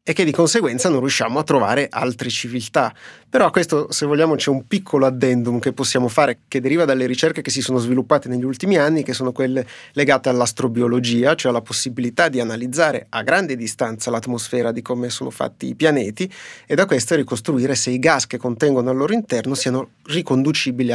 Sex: male